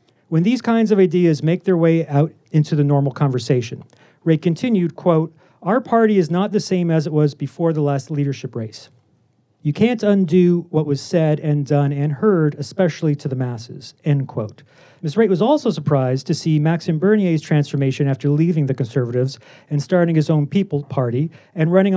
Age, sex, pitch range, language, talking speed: 40-59, male, 145-185 Hz, English, 185 wpm